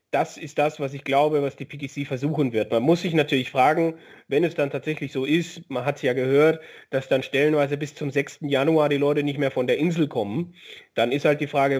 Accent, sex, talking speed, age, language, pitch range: German, male, 240 wpm, 30-49, German, 135-155 Hz